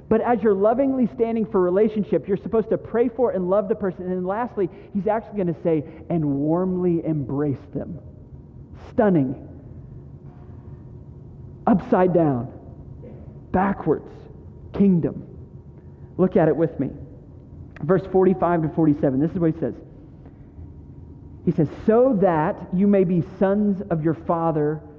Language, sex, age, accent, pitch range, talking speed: English, male, 40-59, American, 170-230 Hz, 135 wpm